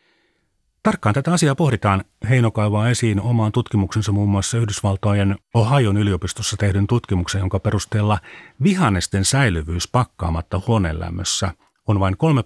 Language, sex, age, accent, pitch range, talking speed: Finnish, male, 40-59, native, 90-130 Hz, 115 wpm